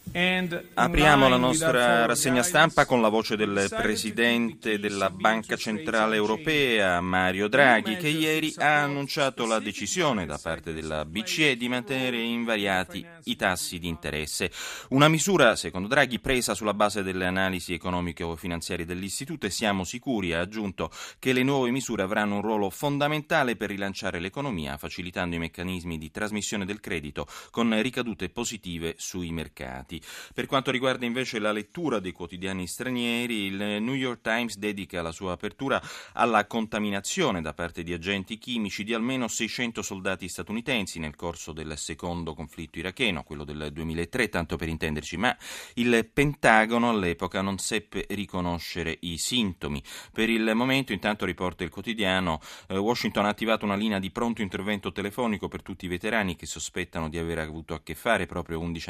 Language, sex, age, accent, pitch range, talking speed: Italian, male, 30-49, native, 85-115 Hz, 155 wpm